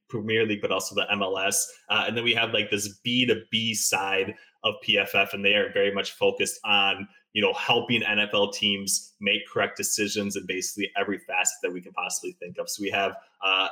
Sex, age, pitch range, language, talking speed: male, 20-39, 100-120 Hz, English, 200 wpm